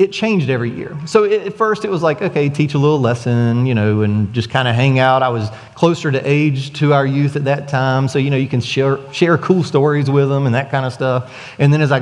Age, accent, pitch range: 30-49, American, 125-150 Hz